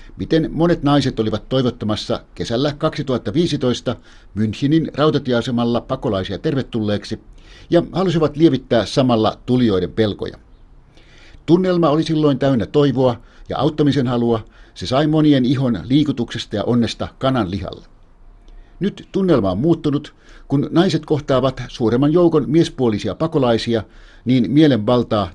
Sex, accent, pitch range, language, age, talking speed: male, native, 110-150 Hz, Finnish, 60-79, 110 wpm